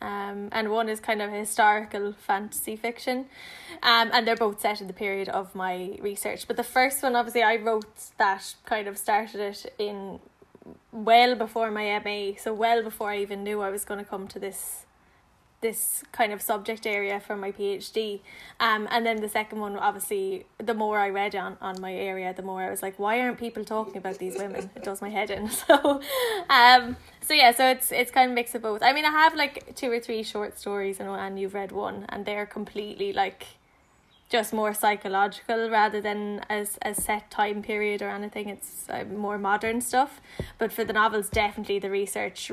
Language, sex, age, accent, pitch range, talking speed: English, female, 10-29, Irish, 200-230 Hz, 210 wpm